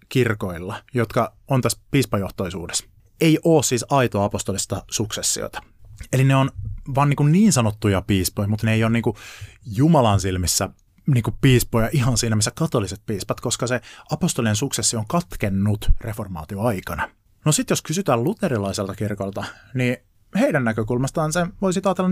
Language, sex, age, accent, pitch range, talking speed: Finnish, male, 30-49, native, 105-150 Hz, 150 wpm